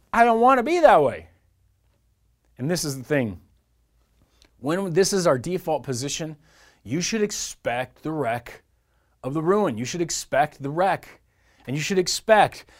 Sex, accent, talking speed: male, American, 165 wpm